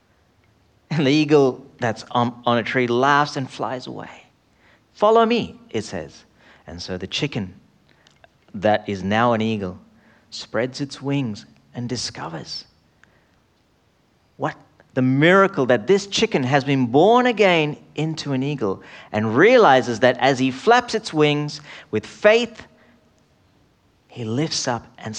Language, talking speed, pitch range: English, 135 wpm, 115-165 Hz